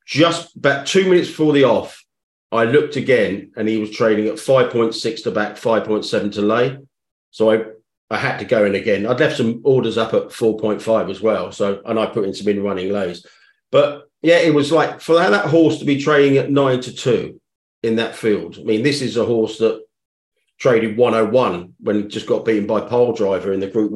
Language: English